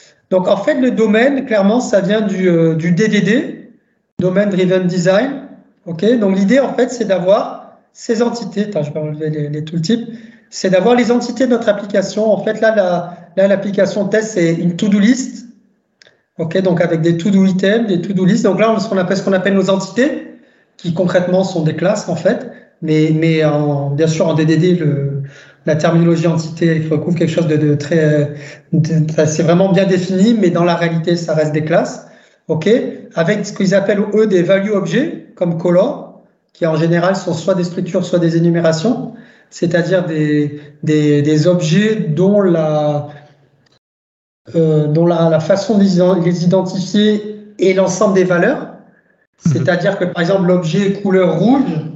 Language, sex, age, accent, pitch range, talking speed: French, male, 40-59, French, 165-210 Hz, 175 wpm